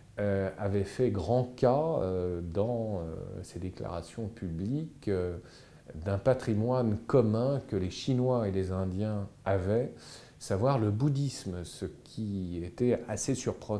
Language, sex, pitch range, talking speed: French, male, 100-130 Hz, 110 wpm